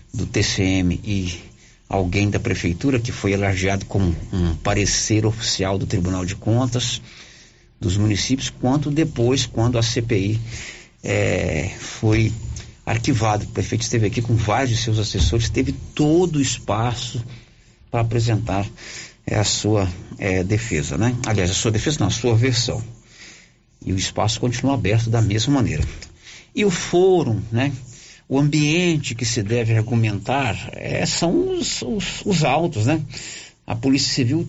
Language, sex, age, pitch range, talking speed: Portuguese, male, 50-69, 105-125 Hz, 145 wpm